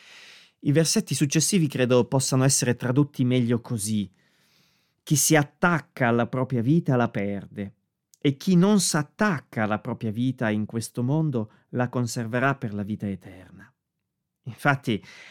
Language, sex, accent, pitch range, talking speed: Italian, male, native, 120-150 Hz, 135 wpm